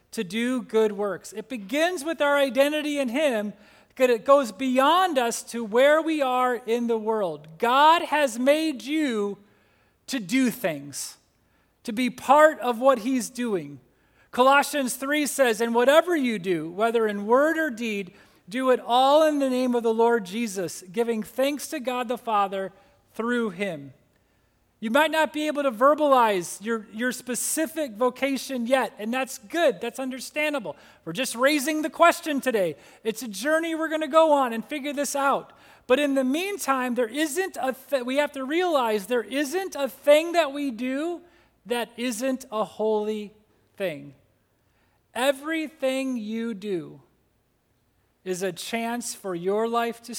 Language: English